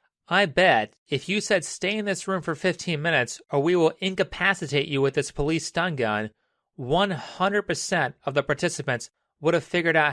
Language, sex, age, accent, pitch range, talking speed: English, male, 30-49, American, 135-175 Hz, 180 wpm